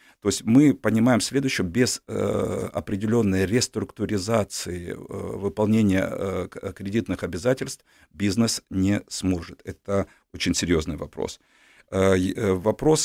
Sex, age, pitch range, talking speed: male, 50-69, 90-110 Hz, 85 wpm